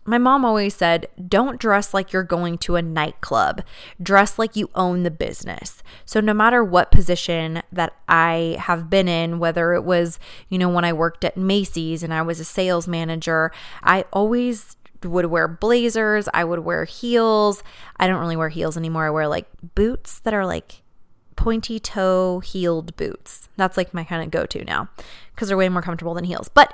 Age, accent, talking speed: 20-39, American, 190 wpm